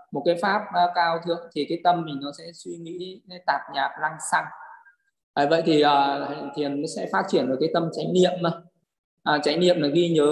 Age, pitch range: 20-39, 160-195 Hz